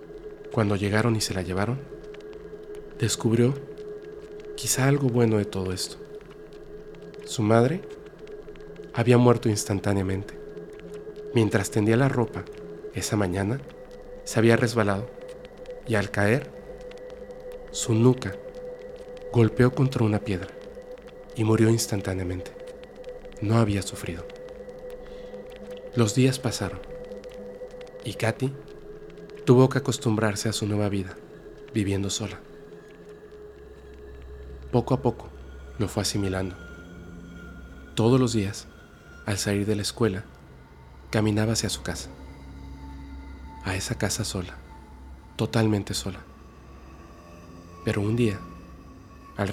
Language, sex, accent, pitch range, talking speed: Spanish, male, Mexican, 85-130 Hz, 100 wpm